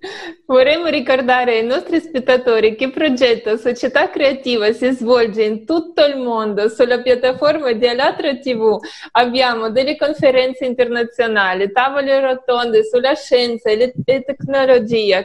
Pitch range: 225-280 Hz